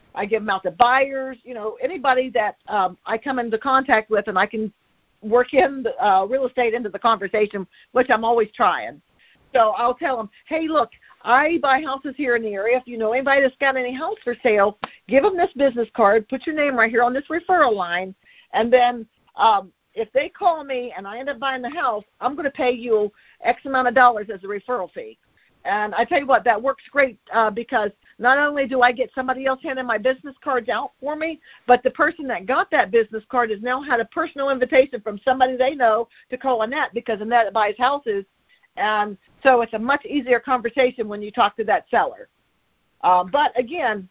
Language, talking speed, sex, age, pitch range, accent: English, 220 wpm, female, 50-69, 220-270 Hz, American